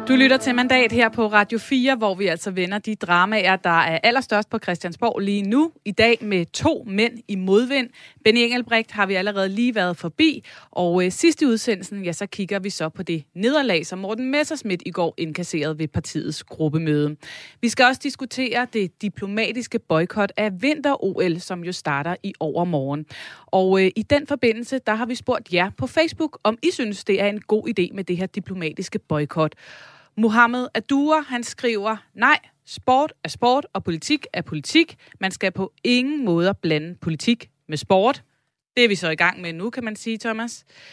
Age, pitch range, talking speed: 30-49, 175-235 Hz, 185 wpm